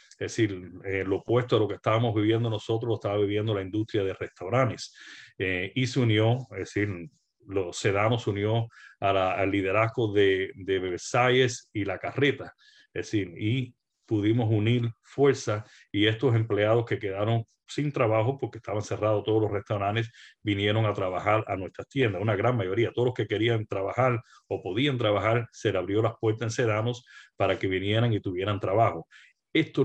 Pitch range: 100-120 Hz